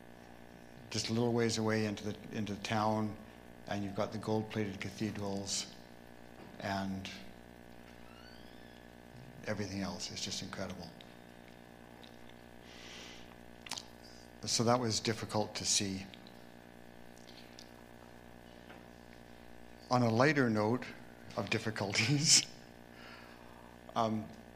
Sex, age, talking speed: male, 60-79, 85 wpm